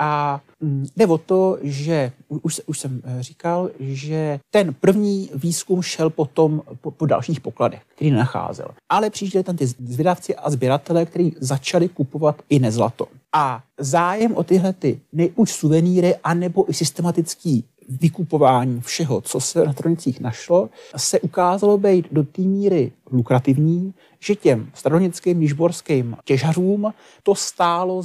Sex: male